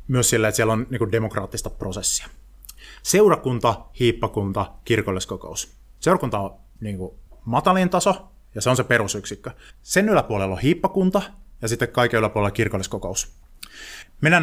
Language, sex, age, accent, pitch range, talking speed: Finnish, male, 30-49, native, 100-125 Hz, 115 wpm